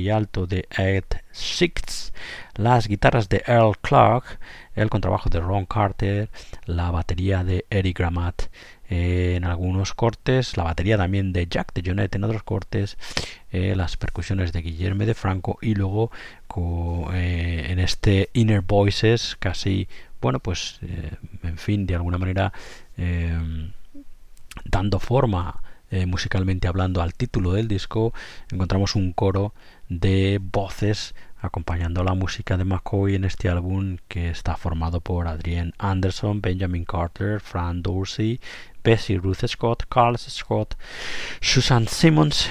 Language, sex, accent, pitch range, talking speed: Spanish, male, Spanish, 85-105 Hz, 135 wpm